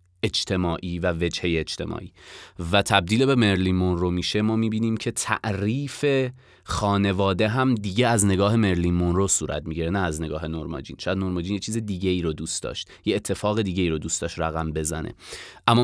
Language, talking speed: Persian, 180 wpm